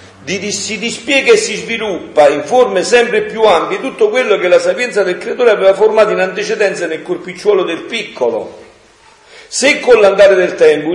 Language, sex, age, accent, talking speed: Italian, male, 50-69, native, 170 wpm